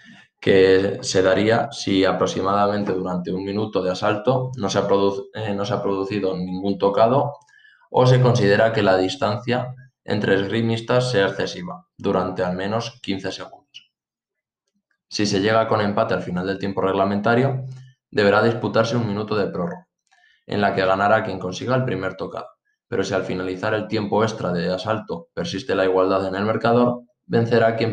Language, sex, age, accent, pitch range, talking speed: Spanish, male, 20-39, Spanish, 95-115 Hz, 170 wpm